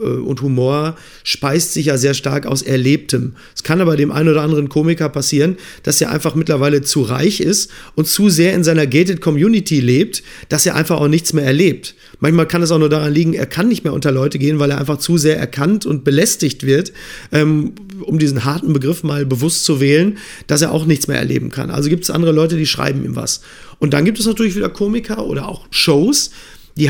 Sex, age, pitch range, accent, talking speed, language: male, 40-59, 145-175 Hz, German, 220 wpm, German